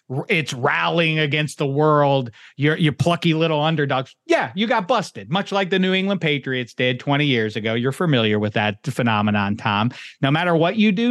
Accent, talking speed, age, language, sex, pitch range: American, 190 wpm, 40-59, English, male, 130-185 Hz